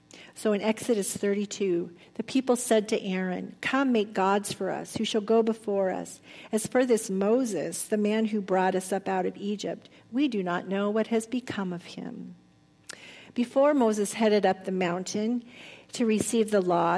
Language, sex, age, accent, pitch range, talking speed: English, female, 50-69, American, 185-220 Hz, 180 wpm